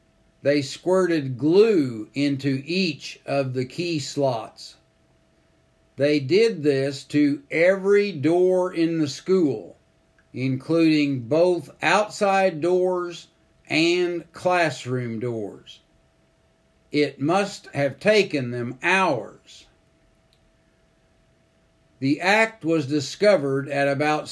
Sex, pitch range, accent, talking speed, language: male, 135-175 Hz, American, 90 wpm, English